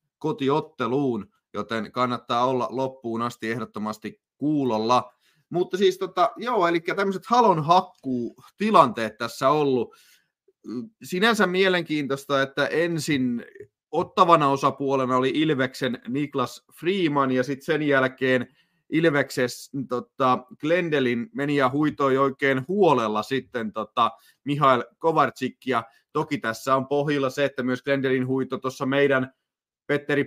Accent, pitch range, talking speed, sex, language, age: native, 125-165 Hz, 115 wpm, male, Finnish, 30-49